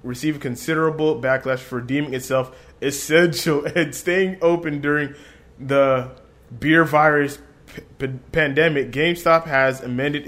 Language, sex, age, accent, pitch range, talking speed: English, male, 20-39, American, 125-155 Hz, 105 wpm